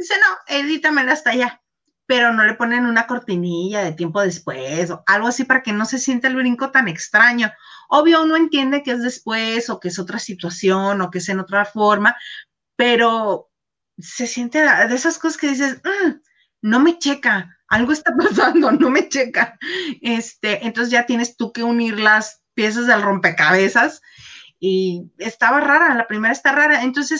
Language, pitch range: Spanish, 220-305 Hz